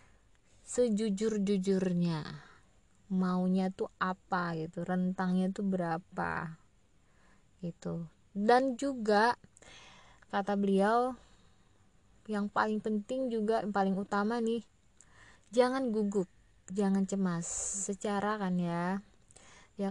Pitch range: 180-220 Hz